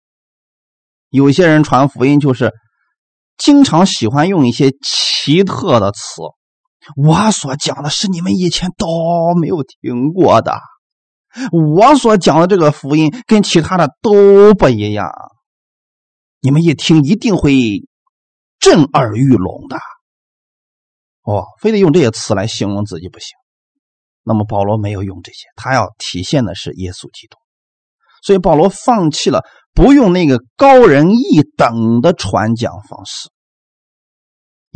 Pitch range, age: 115-180 Hz, 30-49